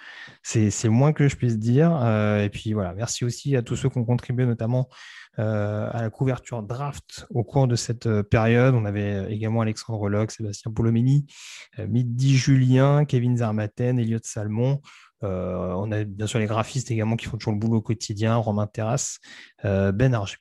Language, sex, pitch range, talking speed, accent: French, male, 110-125 Hz, 195 wpm, French